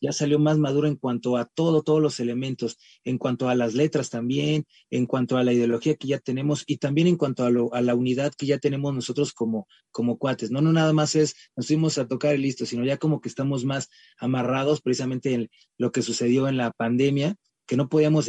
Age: 30-49